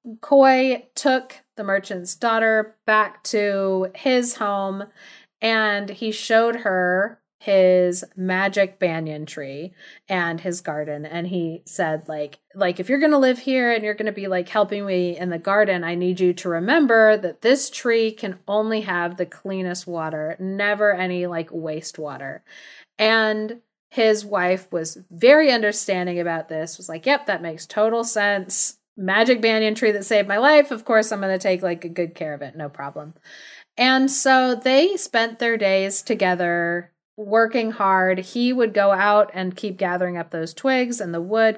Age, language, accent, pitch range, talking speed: 30-49, English, American, 180-225 Hz, 170 wpm